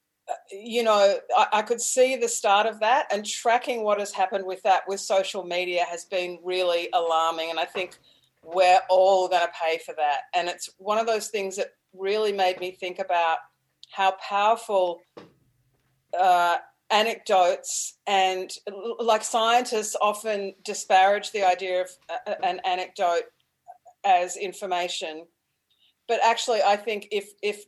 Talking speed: 145 wpm